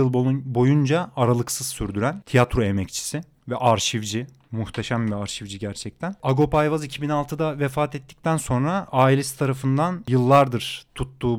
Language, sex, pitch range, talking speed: Turkish, male, 115-135 Hz, 115 wpm